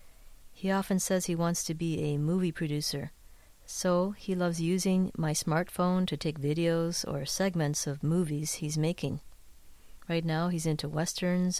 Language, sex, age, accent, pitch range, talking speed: English, female, 40-59, American, 150-180 Hz, 155 wpm